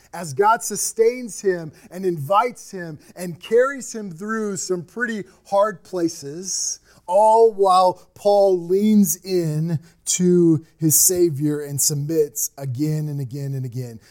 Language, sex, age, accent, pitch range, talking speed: English, male, 30-49, American, 160-215 Hz, 130 wpm